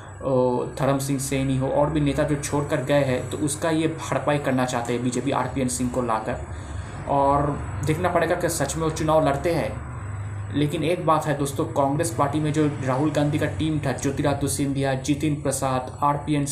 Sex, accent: male, native